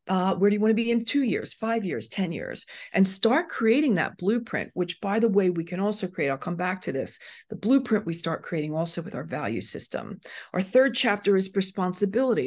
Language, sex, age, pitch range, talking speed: English, female, 40-59, 180-230 Hz, 225 wpm